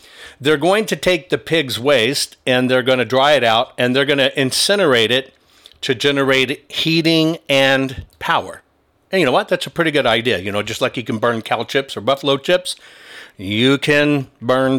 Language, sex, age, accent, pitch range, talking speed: English, male, 50-69, American, 120-155 Hz, 200 wpm